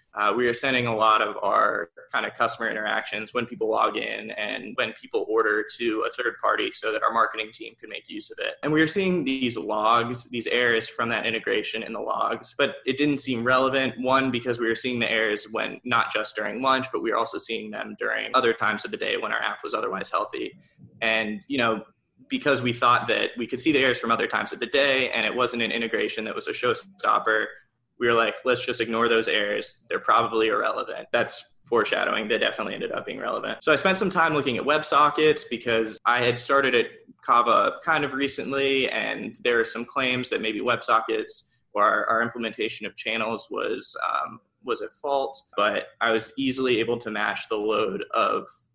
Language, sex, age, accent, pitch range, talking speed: English, male, 20-39, American, 115-185 Hz, 215 wpm